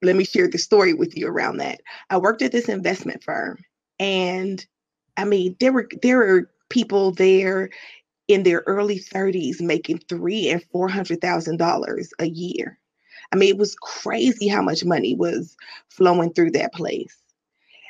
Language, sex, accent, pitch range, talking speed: English, female, American, 180-255 Hz, 160 wpm